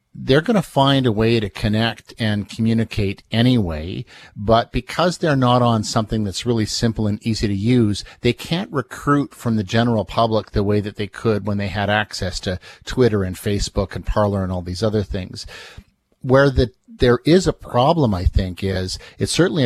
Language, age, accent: English, 50-69, American